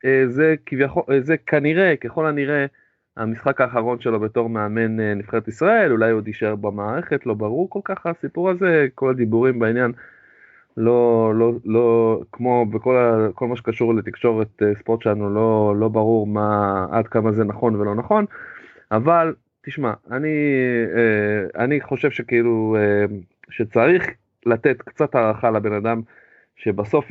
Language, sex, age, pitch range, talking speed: Hebrew, male, 30-49, 110-150 Hz, 135 wpm